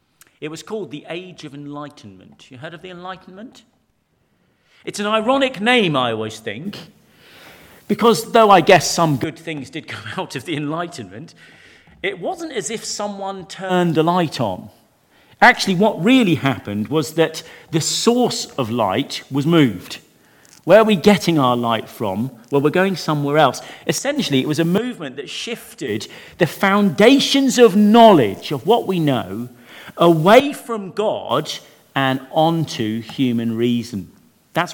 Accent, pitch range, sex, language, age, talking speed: British, 140-210 Hz, male, English, 40-59, 150 wpm